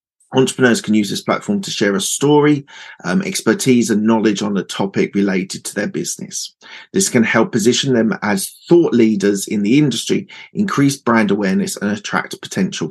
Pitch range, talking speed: 105-145 Hz, 170 wpm